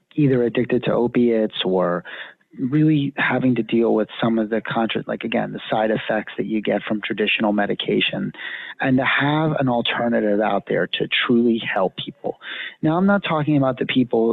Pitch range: 110-130 Hz